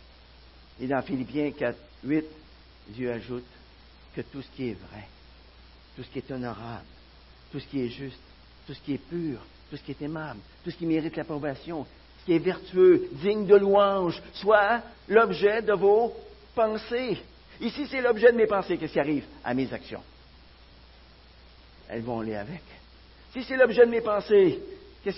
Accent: French